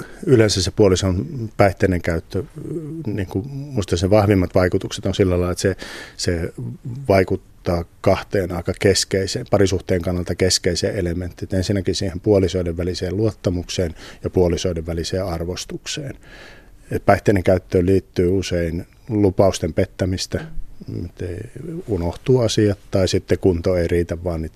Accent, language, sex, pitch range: native, Finnish, male, 90-105 Hz